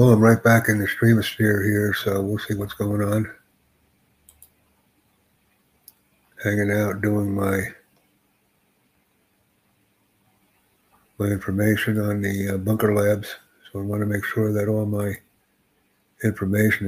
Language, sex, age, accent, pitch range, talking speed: English, male, 60-79, American, 100-110 Hz, 130 wpm